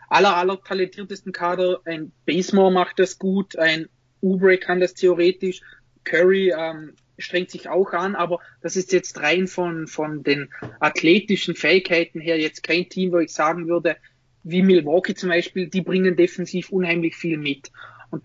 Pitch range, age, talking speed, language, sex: 165-185 Hz, 20-39, 160 wpm, German, male